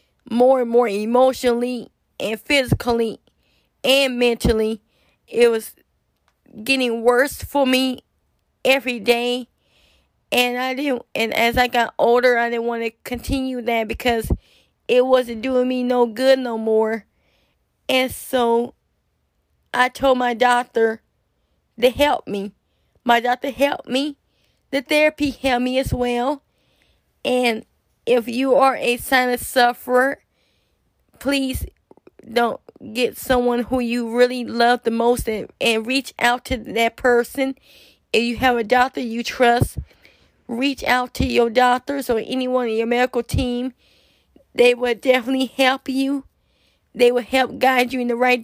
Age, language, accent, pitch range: 20-39, English, American, 240-260 Hz